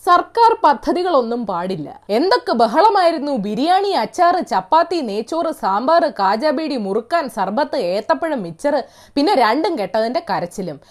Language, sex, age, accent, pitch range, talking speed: Malayalam, female, 20-39, native, 230-360 Hz, 105 wpm